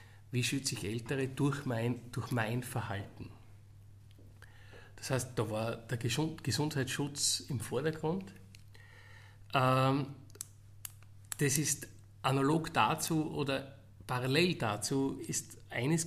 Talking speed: 95 wpm